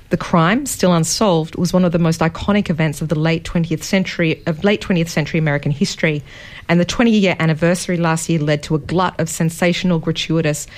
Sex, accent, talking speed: female, Australian, 175 wpm